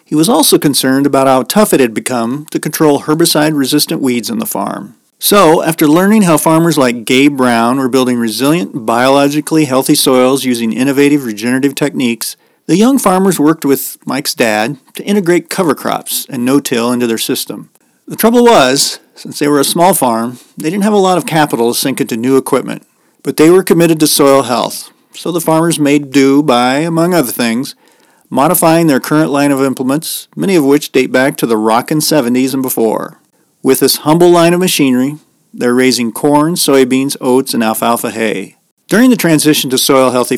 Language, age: English, 40-59